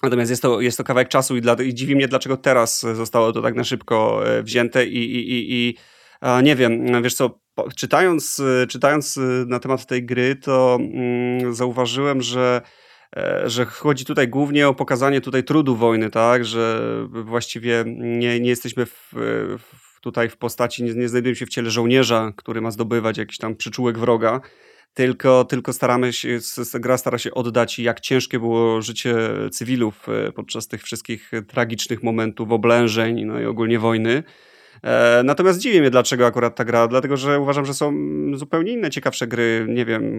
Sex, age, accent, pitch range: male, 30-49, native, 115-125 Hz